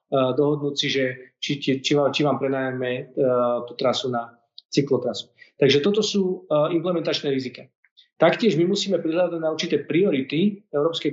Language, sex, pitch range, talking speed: Slovak, male, 135-175 Hz, 155 wpm